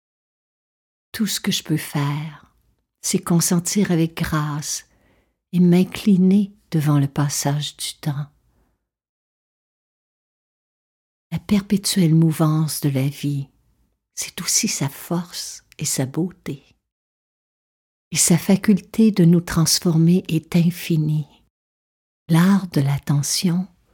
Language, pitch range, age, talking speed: French, 155-195 Hz, 60-79, 105 wpm